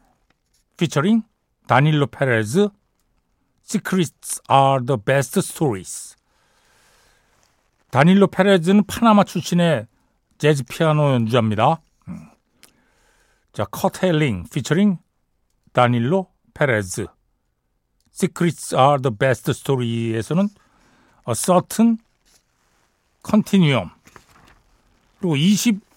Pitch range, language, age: 135-190 Hz, Korean, 60-79